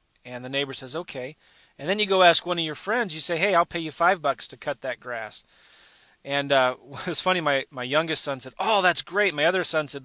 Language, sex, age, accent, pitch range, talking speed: English, male, 30-49, American, 145-180 Hz, 250 wpm